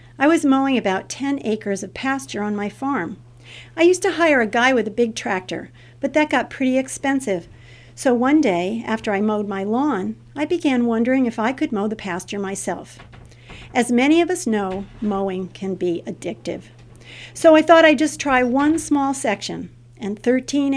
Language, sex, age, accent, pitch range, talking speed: English, female, 50-69, American, 185-255 Hz, 185 wpm